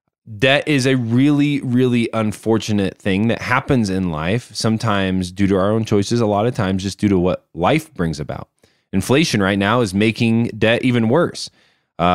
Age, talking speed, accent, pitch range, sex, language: 20-39, 185 wpm, American, 90-125 Hz, male, English